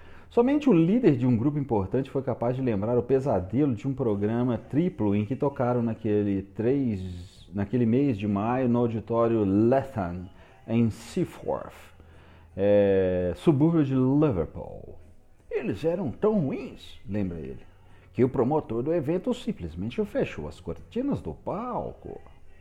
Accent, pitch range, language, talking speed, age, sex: Brazilian, 95-140 Hz, Portuguese, 140 wpm, 40-59, male